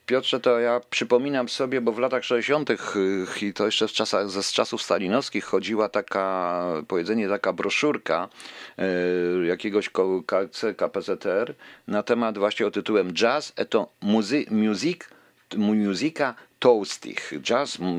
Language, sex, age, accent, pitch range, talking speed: Polish, male, 50-69, native, 95-125 Hz, 135 wpm